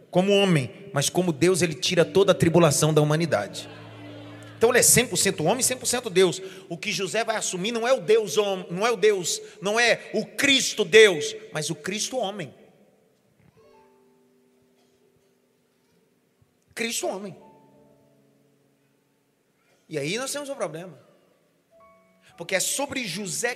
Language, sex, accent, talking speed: Portuguese, male, Brazilian, 140 wpm